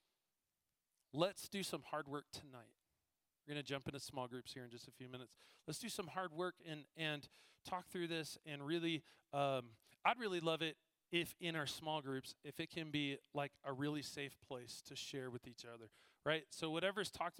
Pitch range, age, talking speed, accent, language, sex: 140-165 Hz, 40-59, 200 wpm, American, English, male